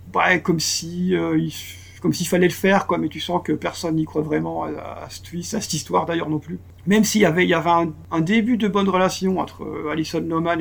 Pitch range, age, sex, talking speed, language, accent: 105-170 Hz, 50-69, male, 250 wpm, French, French